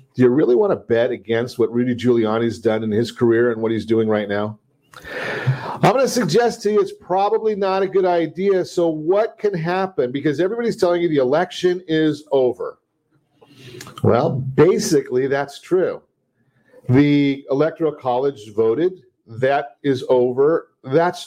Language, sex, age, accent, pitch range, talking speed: English, male, 50-69, American, 125-170 Hz, 160 wpm